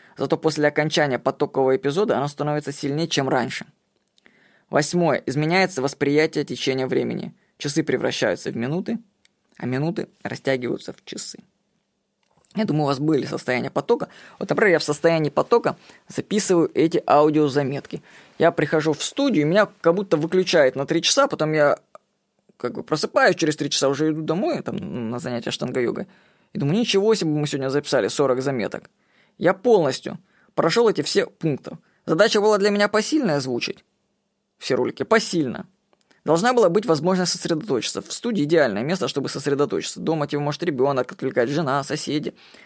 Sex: female